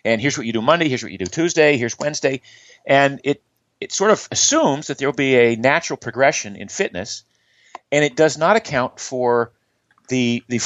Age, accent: 40-59, American